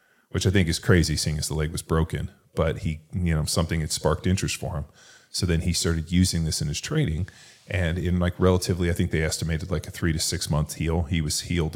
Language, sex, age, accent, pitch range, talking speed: English, male, 30-49, American, 80-90 Hz, 245 wpm